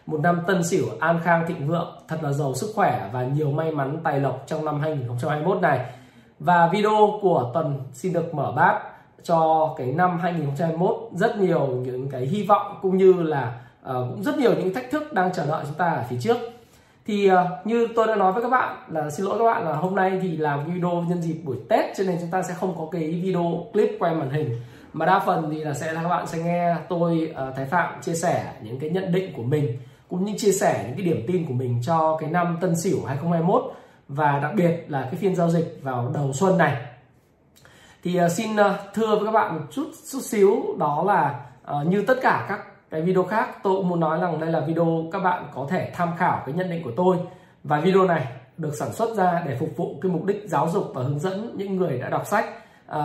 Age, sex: 20-39, male